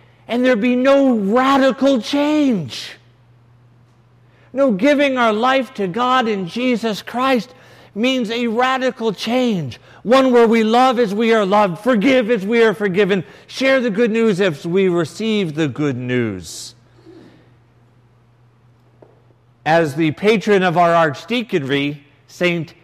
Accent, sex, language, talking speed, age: American, male, English, 130 wpm, 50-69